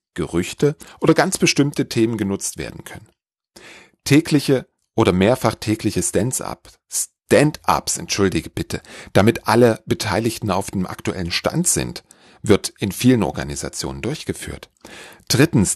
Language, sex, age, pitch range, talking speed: German, male, 40-59, 105-140 Hz, 115 wpm